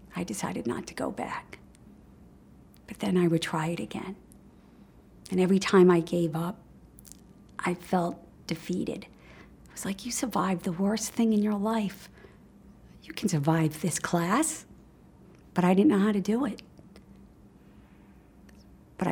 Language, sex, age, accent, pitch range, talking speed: English, female, 50-69, American, 165-195 Hz, 150 wpm